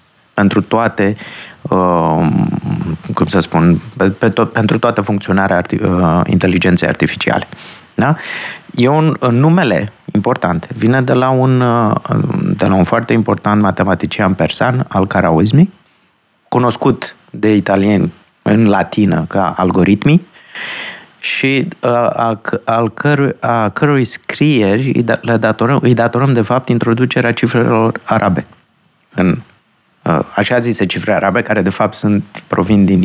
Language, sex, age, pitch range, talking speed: Romanian, male, 30-49, 100-125 Hz, 125 wpm